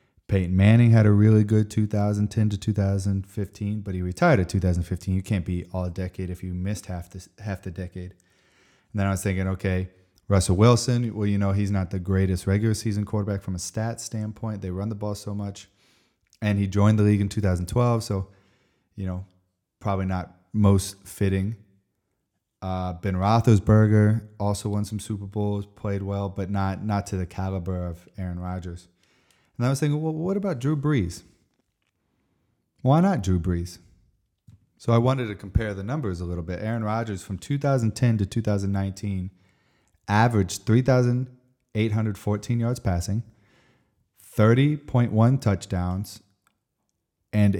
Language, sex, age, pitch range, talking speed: English, male, 30-49, 95-110 Hz, 155 wpm